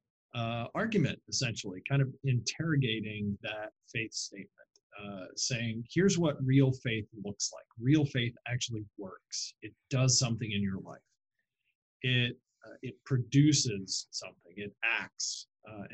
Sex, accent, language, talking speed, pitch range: male, American, English, 130 wpm, 110-135 Hz